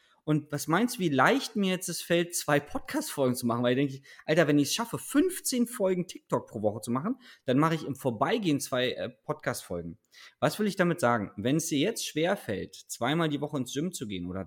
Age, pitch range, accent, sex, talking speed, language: 20-39, 130-210 Hz, German, male, 230 wpm, German